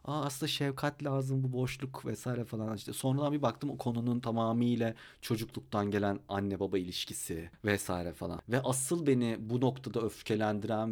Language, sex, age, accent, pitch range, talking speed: Turkish, male, 40-59, native, 110-155 Hz, 155 wpm